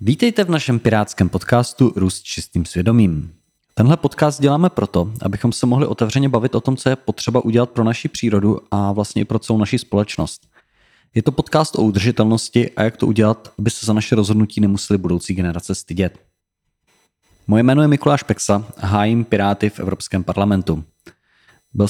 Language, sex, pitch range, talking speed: Czech, male, 100-125 Hz, 175 wpm